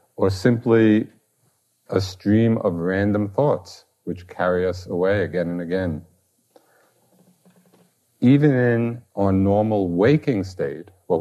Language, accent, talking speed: English, American, 110 wpm